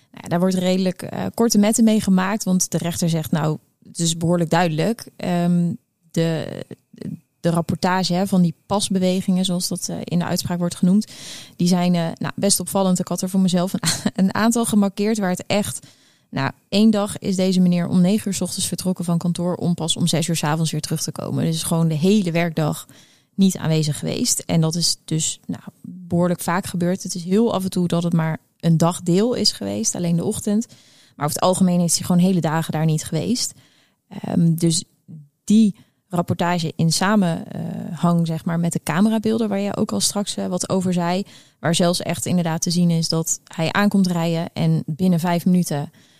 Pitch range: 165-190 Hz